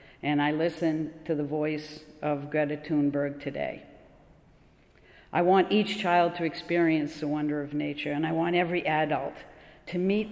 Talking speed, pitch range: 155 wpm, 155-175 Hz